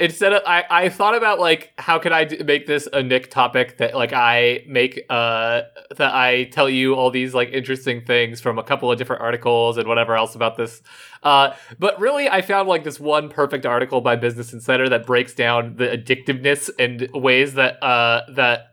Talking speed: 205 wpm